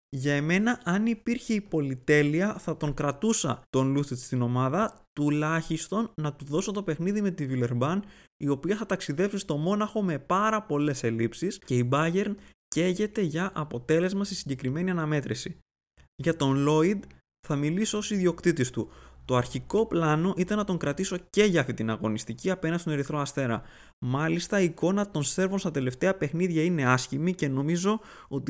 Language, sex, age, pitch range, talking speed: Greek, male, 20-39, 135-195 Hz, 165 wpm